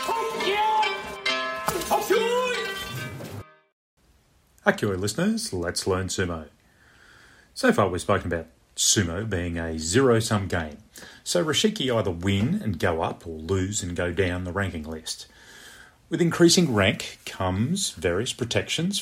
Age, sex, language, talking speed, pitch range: 30-49, male, English, 120 wpm, 95-140 Hz